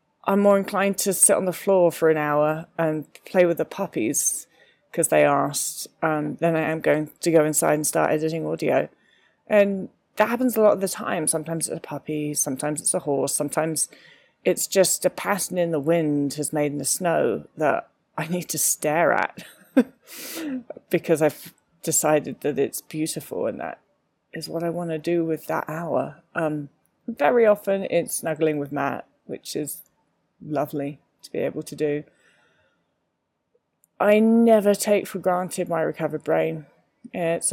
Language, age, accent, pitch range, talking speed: English, 20-39, British, 150-185 Hz, 170 wpm